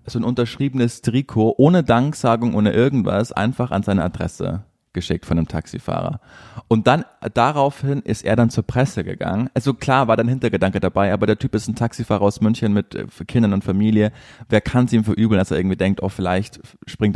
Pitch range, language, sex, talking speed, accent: 95-120 Hz, German, male, 190 wpm, German